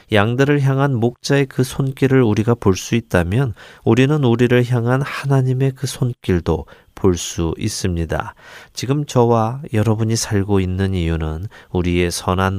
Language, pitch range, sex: Korean, 90-125 Hz, male